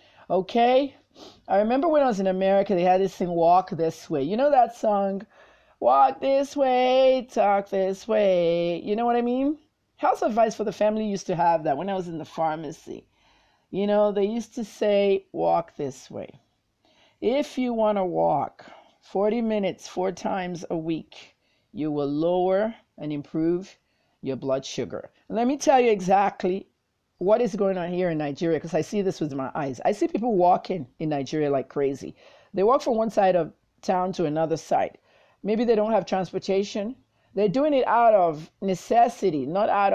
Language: English